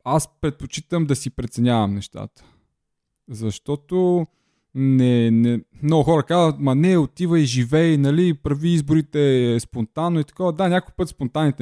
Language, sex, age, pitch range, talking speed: Bulgarian, male, 20-39, 110-155 Hz, 140 wpm